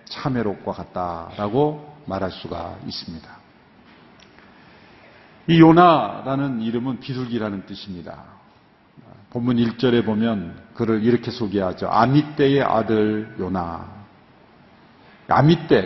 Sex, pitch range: male, 100-140 Hz